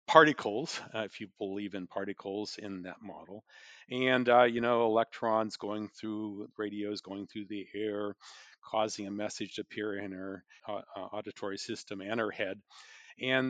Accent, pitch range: American, 110-155 Hz